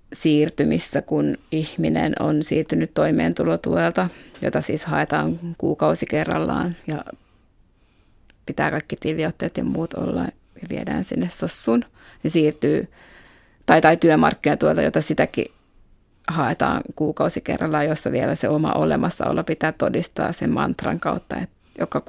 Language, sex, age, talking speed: Finnish, female, 30-49, 110 wpm